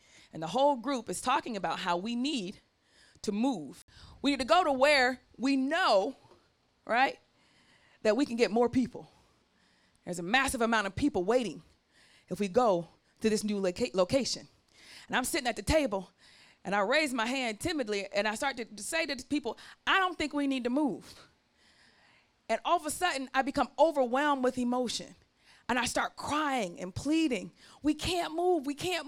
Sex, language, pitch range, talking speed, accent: female, English, 220-295 Hz, 185 wpm, American